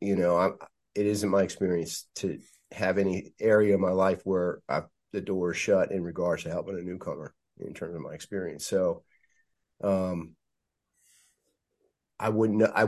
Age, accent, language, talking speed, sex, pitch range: 30-49, American, English, 160 wpm, male, 90-110 Hz